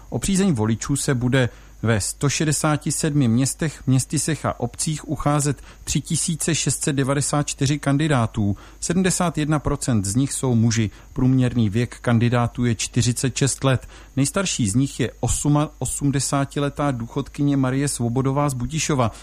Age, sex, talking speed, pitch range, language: 40-59, male, 110 wpm, 120-150 Hz, Czech